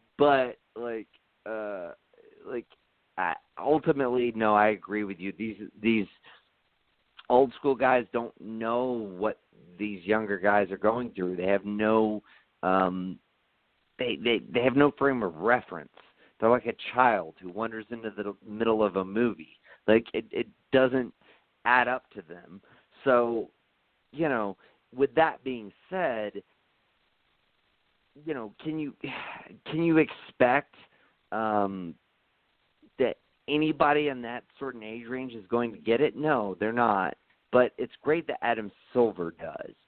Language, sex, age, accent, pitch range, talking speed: English, male, 40-59, American, 100-130 Hz, 140 wpm